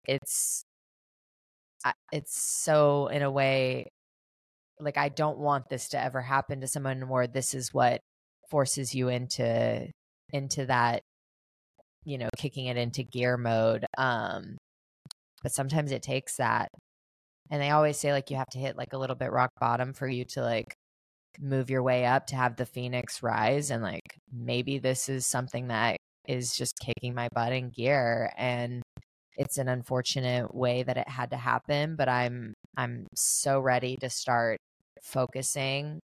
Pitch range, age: 120-135 Hz, 20-39